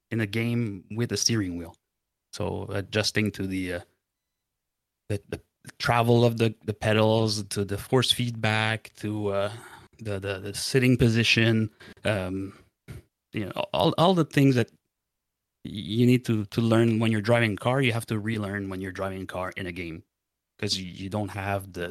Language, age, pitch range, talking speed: English, 30-49, 100-120 Hz, 180 wpm